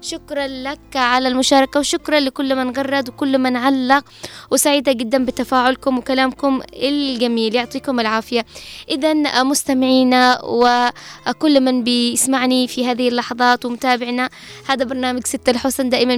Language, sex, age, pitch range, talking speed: Arabic, female, 20-39, 255-280 Hz, 120 wpm